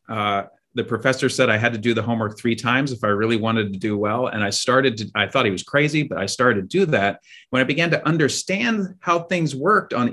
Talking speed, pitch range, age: 255 wpm, 100-130 Hz, 30-49